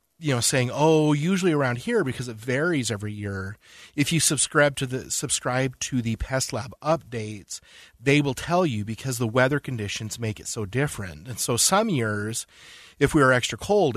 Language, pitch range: English, 110-135 Hz